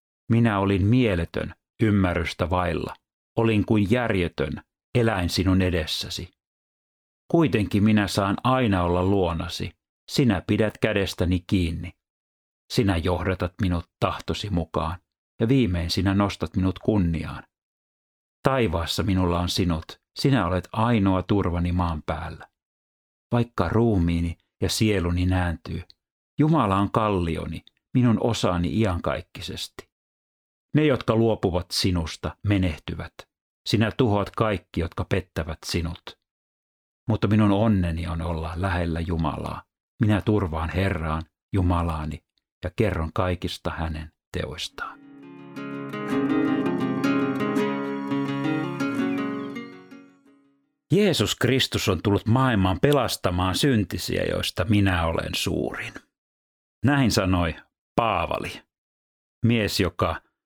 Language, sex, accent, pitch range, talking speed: Finnish, male, native, 85-105 Hz, 95 wpm